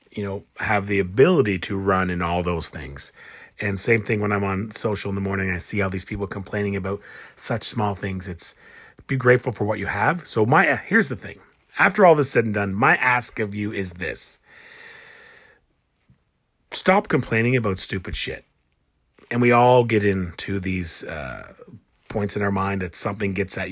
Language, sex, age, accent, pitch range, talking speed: English, male, 30-49, American, 95-125 Hz, 190 wpm